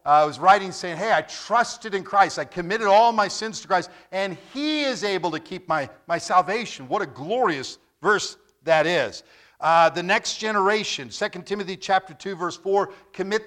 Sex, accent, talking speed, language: male, American, 190 wpm, English